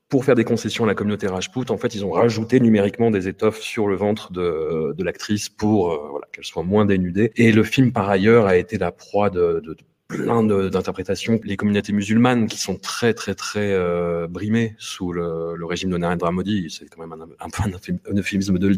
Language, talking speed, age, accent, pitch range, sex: French, 225 wpm, 30-49, French, 95-115 Hz, male